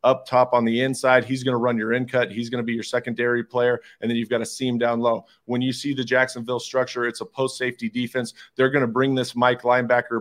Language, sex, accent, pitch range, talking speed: English, male, American, 120-130 Hz, 260 wpm